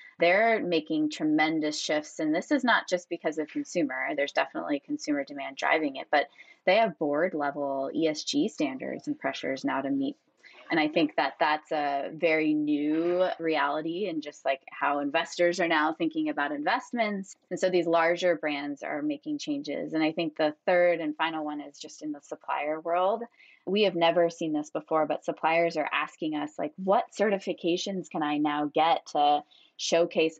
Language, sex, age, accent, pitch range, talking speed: English, female, 20-39, American, 150-185 Hz, 180 wpm